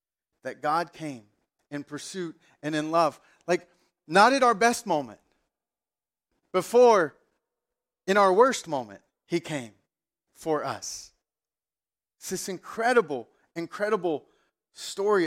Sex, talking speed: male, 110 wpm